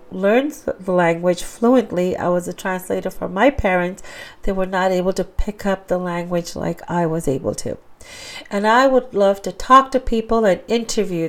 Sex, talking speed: female, 185 wpm